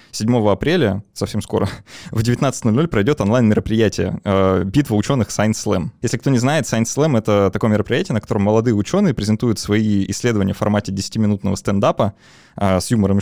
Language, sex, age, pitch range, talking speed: Russian, male, 20-39, 100-120 Hz, 155 wpm